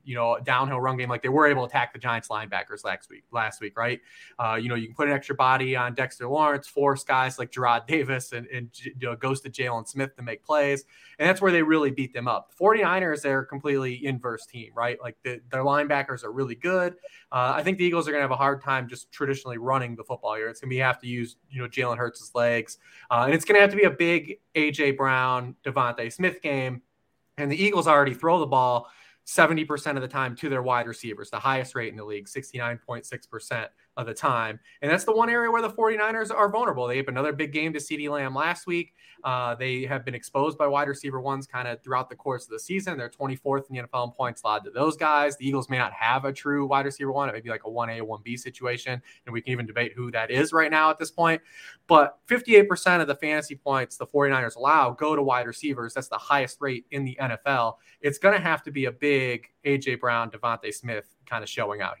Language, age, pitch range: English, 20-39, 120-145 Hz